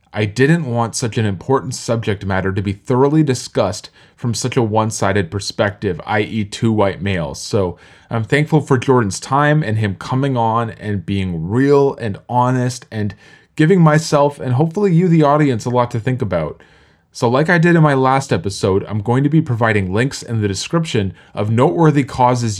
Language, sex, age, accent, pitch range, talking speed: English, male, 20-39, American, 105-140 Hz, 185 wpm